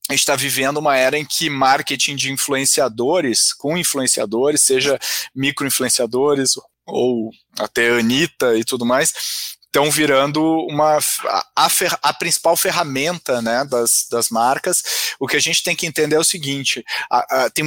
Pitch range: 140-175 Hz